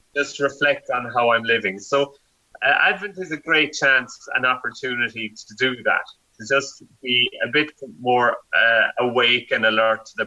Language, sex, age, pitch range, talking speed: English, male, 30-49, 120-150 Hz, 175 wpm